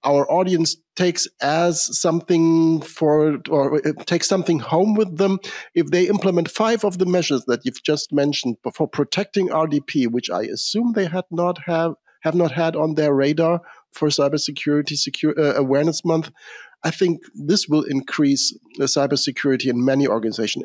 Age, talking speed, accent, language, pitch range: 50-69, 160 wpm, German, English, 125-160 Hz